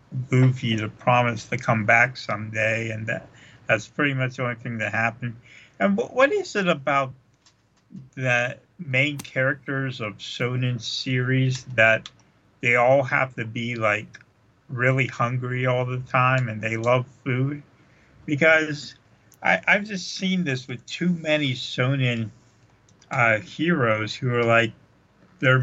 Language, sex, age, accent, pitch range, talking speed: English, male, 50-69, American, 115-140 Hz, 145 wpm